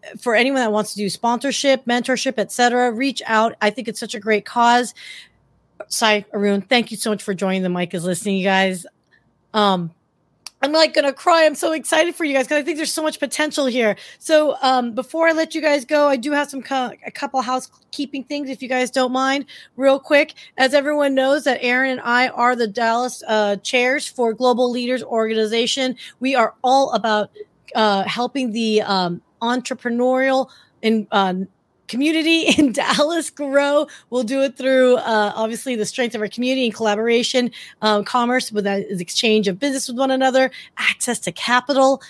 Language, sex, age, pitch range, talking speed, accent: English, female, 30-49, 215-265 Hz, 190 wpm, American